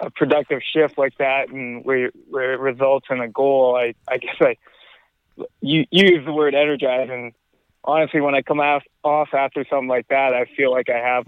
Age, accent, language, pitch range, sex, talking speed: 20-39, American, English, 120-140 Hz, male, 200 wpm